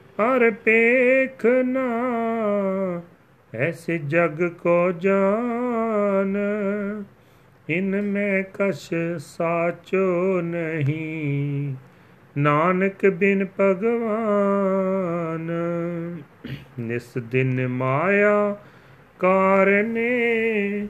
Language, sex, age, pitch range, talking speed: Punjabi, male, 40-59, 165-200 Hz, 50 wpm